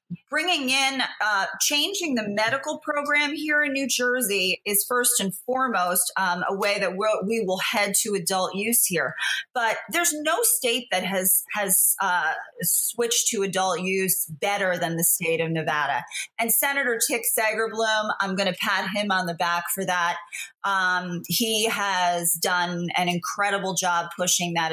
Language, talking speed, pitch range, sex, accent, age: English, 165 wpm, 180-235 Hz, female, American, 30-49